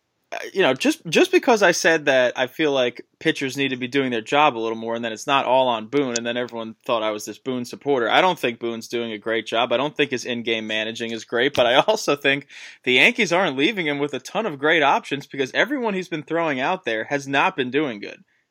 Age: 20-39